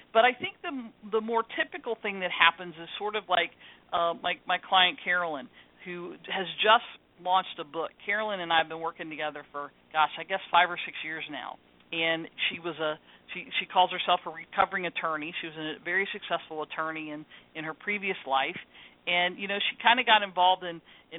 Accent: American